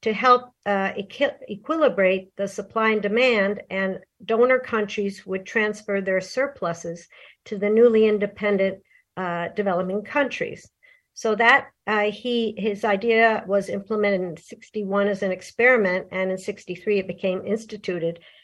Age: 50-69